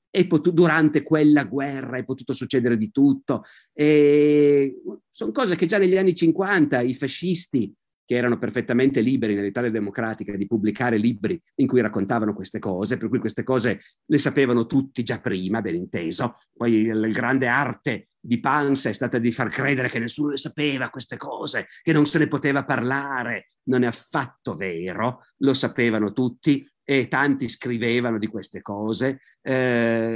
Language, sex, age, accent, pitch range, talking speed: Italian, male, 50-69, native, 120-145 Hz, 160 wpm